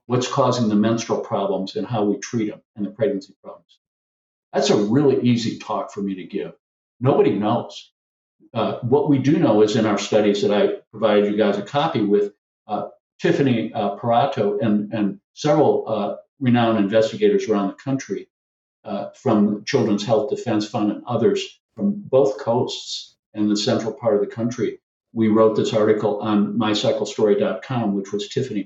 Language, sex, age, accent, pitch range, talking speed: English, male, 50-69, American, 105-135 Hz, 170 wpm